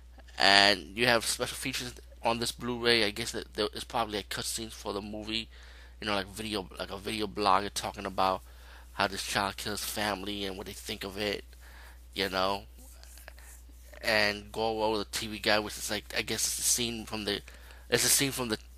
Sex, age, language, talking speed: male, 20-39, English, 195 wpm